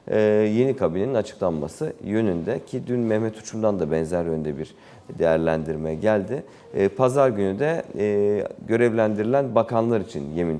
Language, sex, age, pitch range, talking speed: Turkish, male, 40-59, 85-115 Hz, 135 wpm